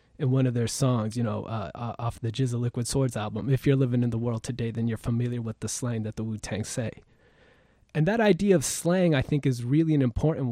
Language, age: English, 20-39